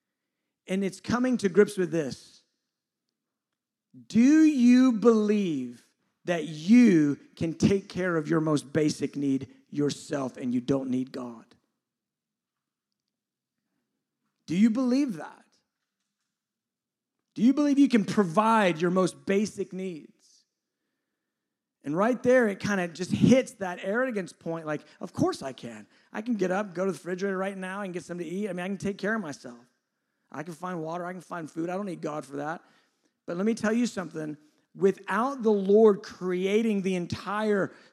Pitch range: 180-265 Hz